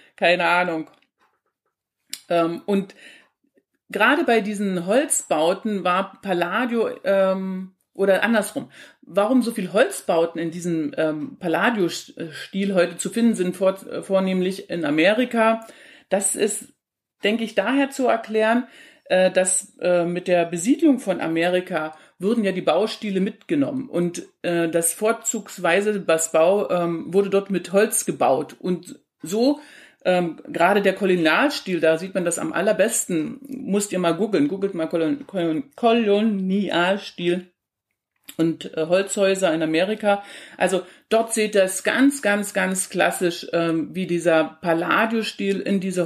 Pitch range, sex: 175-220 Hz, female